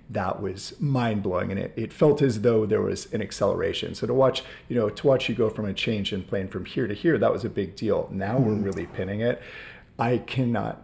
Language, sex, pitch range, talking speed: English, male, 95-120 Hz, 245 wpm